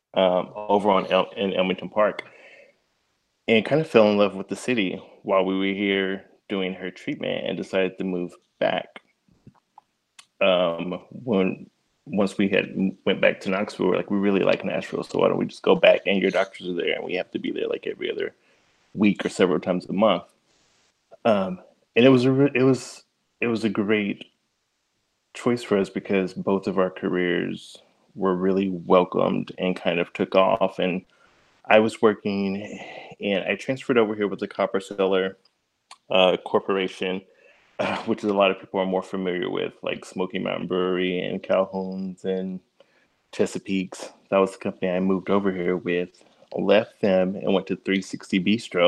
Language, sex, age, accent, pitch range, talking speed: English, male, 20-39, American, 95-105 Hz, 180 wpm